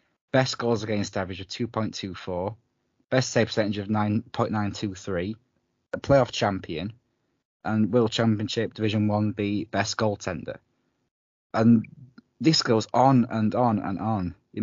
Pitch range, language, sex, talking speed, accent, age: 100-120 Hz, English, male, 125 wpm, British, 20-39